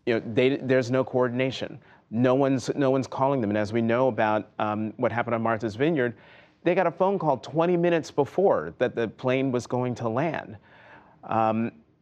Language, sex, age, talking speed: English, male, 30-49, 195 wpm